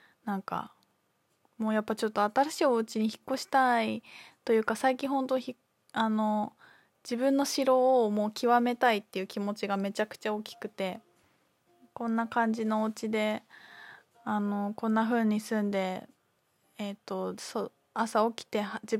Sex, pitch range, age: female, 205-235 Hz, 20-39